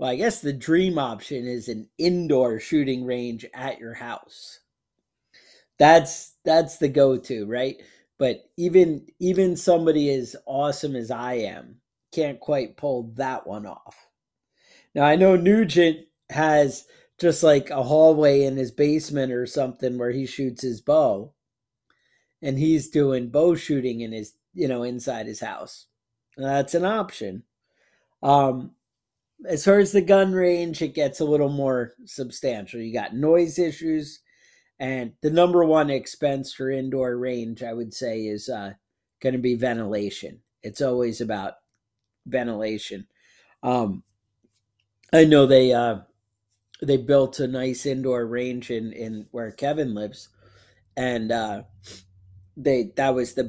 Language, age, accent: English, 40-59, American